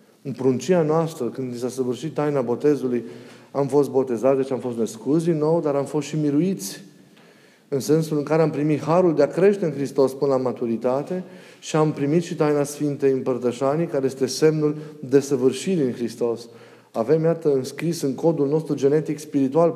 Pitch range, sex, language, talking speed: 130-160 Hz, male, Romanian, 175 wpm